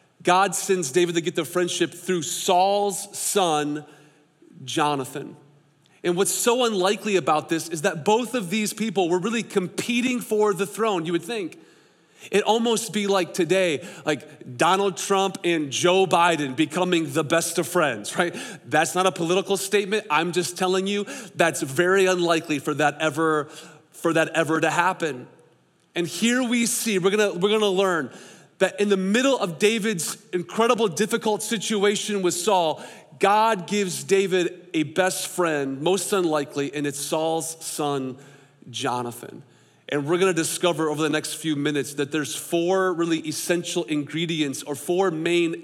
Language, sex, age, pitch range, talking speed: English, male, 30-49, 155-195 Hz, 160 wpm